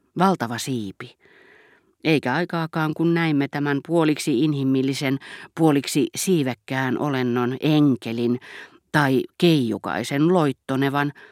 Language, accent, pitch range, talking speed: Finnish, native, 130-170 Hz, 85 wpm